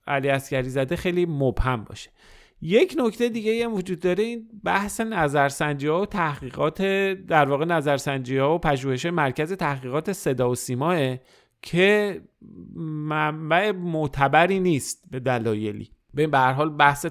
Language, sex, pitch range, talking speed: Persian, male, 120-155 Hz, 135 wpm